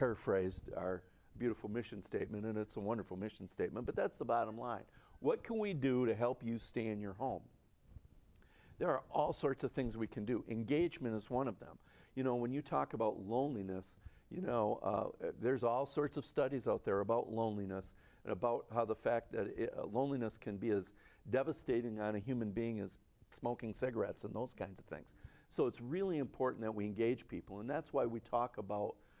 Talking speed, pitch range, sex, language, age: 200 wpm, 105-130 Hz, male, English, 50-69